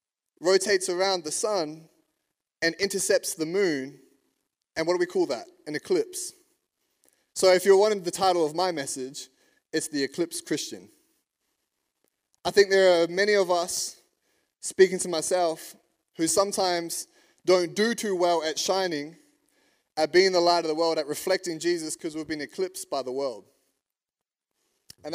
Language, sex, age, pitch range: English, male, 20-39, 145-190 Hz